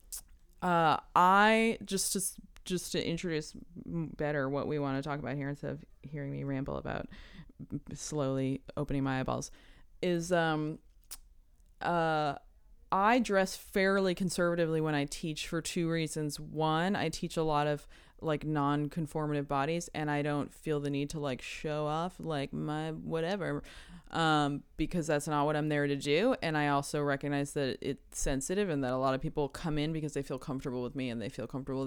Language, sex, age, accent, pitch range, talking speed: English, female, 20-39, American, 145-180 Hz, 175 wpm